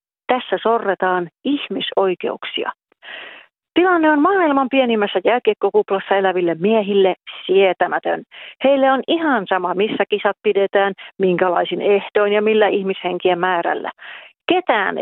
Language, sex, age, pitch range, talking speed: Finnish, female, 40-59, 195-260 Hz, 100 wpm